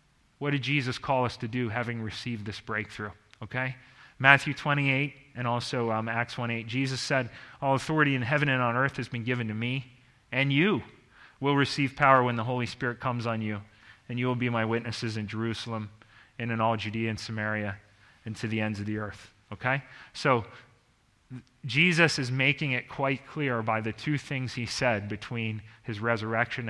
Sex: male